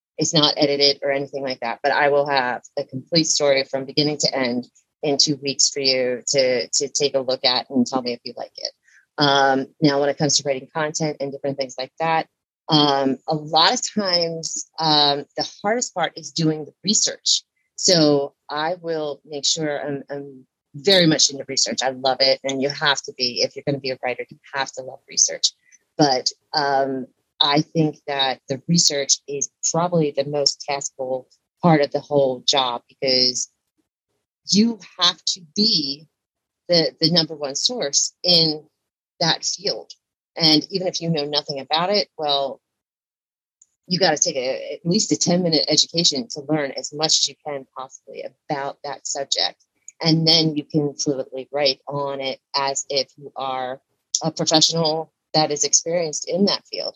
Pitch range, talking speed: 135-160 Hz, 180 wpm